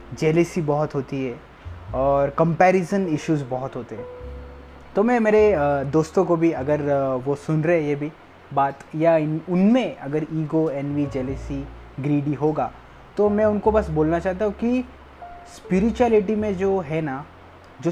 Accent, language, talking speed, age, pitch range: Indian, English, 110 wpm, 20-39, 140-190 Hz